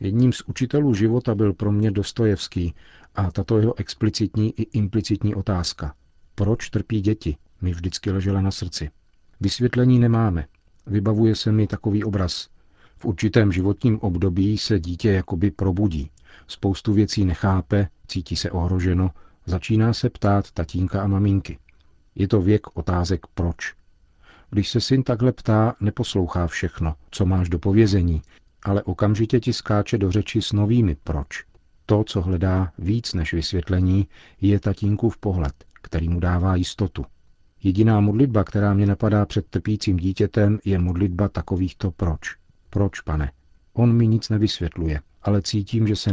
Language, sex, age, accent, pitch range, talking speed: Czech, male, 50-69, native, 85-105 Hz, 145 wpm